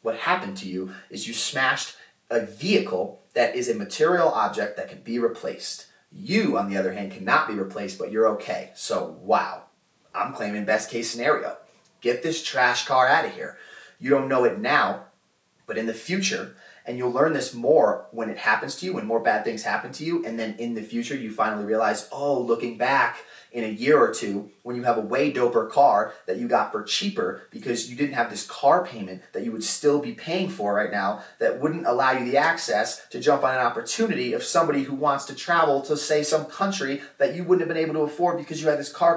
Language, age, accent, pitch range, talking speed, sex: English, 30-49, American, 120-165 Hz, 225 wpm, male